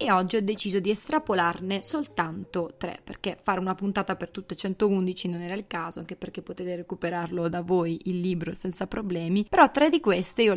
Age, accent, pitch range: 20-39, native, 175-205 Hz